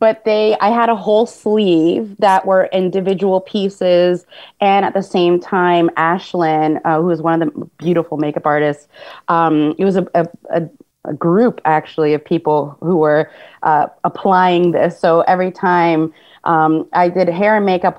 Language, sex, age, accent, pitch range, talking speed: English, female, 30-49, American, 155-185 Hz, 165 wpm